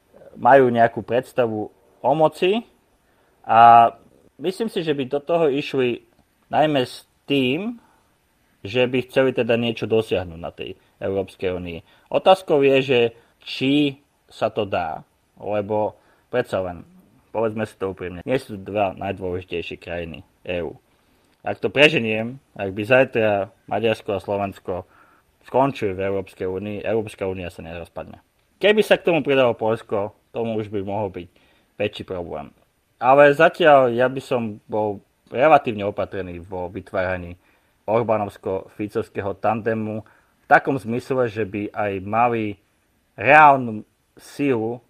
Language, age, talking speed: Czech, 20-39, 130 wpm